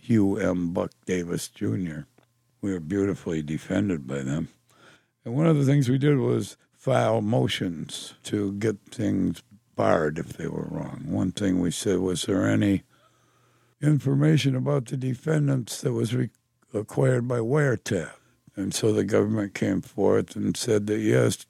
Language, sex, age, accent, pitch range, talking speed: English, male, 60-79, American, 95-120 Hz, 155 wpm